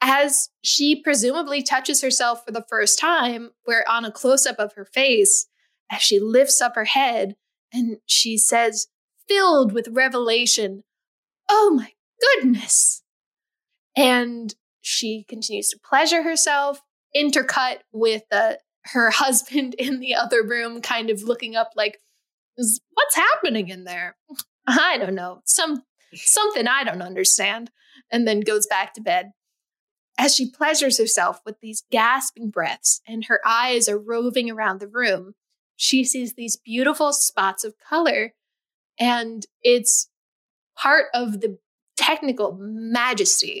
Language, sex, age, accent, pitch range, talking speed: English, female, 10-29, American, 220-285 Hz, 140 wpm